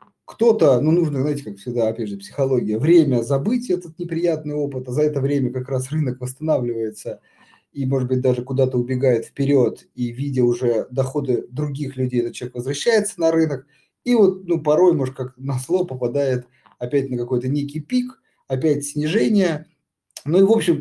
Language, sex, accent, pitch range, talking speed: Russian, male, native, 125-165 Hz, 175 wpm